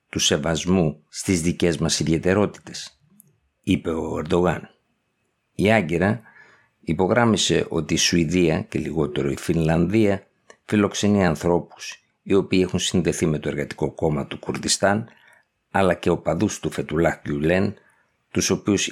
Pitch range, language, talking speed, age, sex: 80-100 Hz, Greek, 125 wpm, 50-69, male